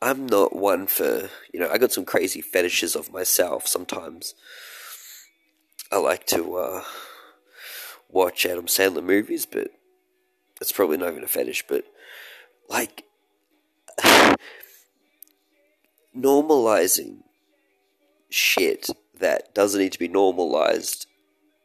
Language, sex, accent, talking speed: English, male, Australian, 110 wpm